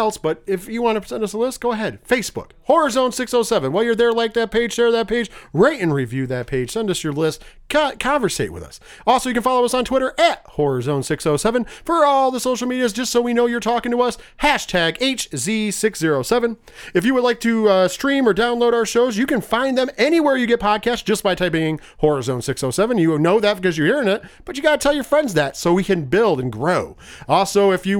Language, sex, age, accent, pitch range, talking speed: English, male, 40-59, American, 190-250 Hz, 225 wpm